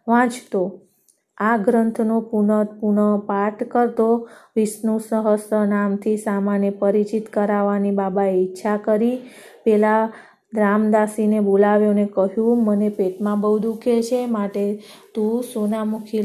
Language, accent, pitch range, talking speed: Gujarati, native, 205-220 Hz, 110 wpm